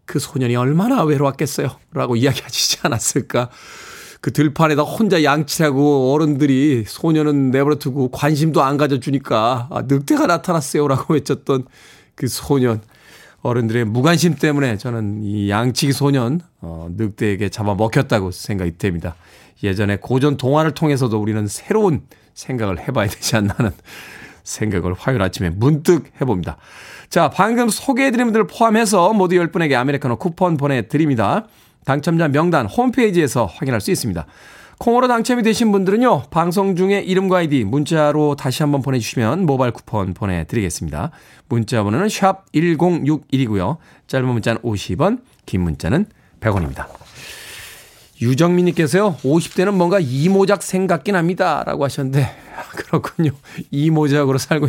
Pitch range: 115-175 Hz